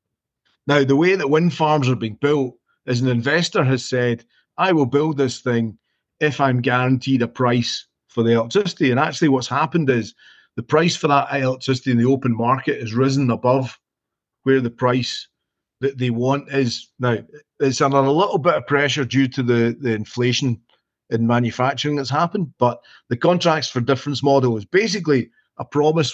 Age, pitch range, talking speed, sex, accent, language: 40-59, 120-145 Hz, 180 wpm, male, British, English